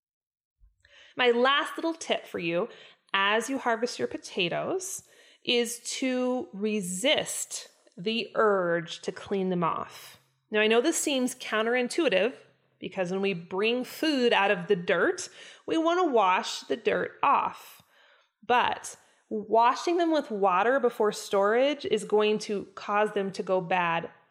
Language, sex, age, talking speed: English, female, 20-39, 140 wpm